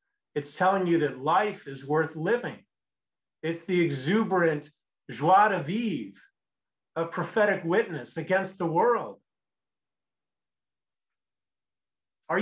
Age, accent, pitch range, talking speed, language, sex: 40-59, American, 135-190 Hz, 100 wpm, English, male